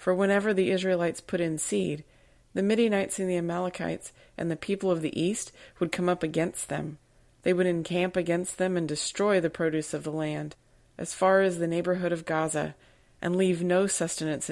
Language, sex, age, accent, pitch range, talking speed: English, female, 30-49, American, 160-185 Hz, 190 wpm